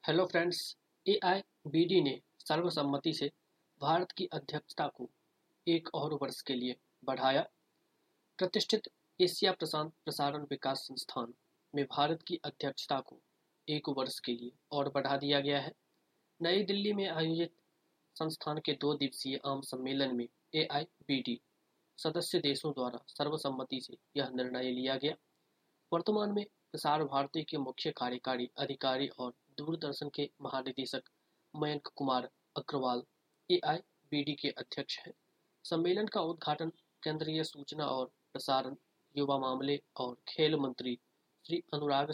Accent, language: native, Hindi